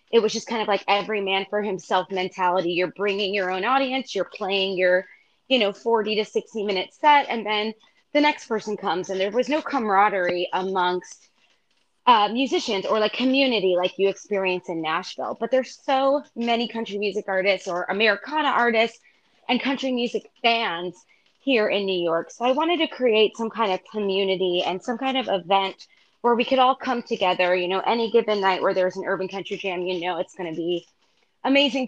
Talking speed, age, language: 195 wpm, 20-39, English